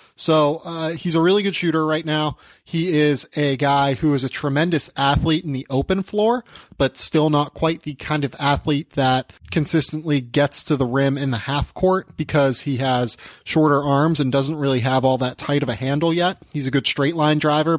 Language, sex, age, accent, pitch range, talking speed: English, male, 30-49, American, 130-155 Hz, 210 wpm